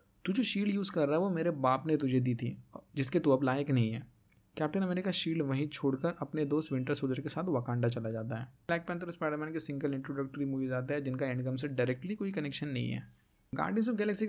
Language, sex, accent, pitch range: Hindi, male, native, 130-170 Hz